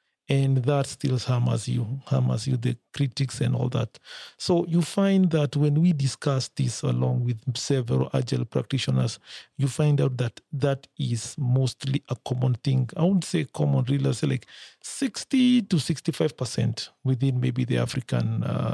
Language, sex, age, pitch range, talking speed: English, male, 40-59, 125-145 Hz, 160 wpm